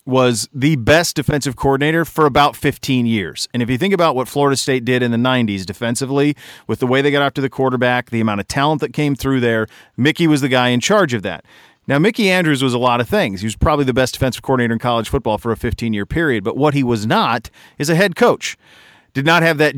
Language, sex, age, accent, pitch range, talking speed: English, male, 40-59, American, 115-145 Hz, 245 wpm